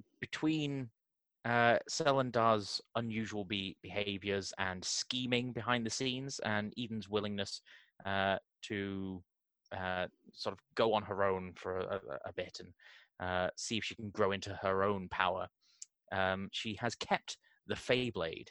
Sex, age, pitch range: male, 20-39, 95-120 Hz